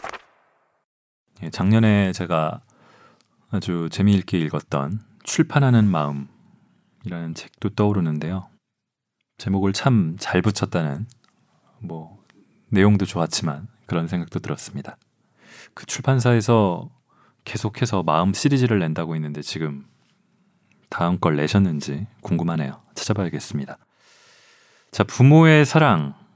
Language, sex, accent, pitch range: Korean, male, native, 90-115 Hz